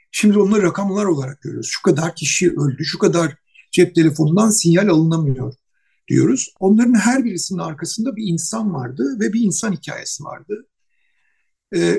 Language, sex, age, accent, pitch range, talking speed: Turkish, male, 60-79, native, 165-220 Hz, 145 wpm